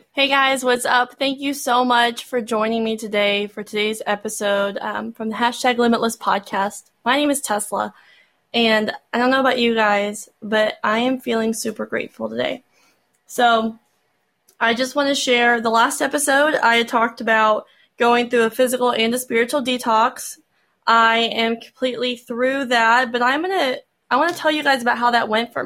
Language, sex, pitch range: English, female, 230-265 Hz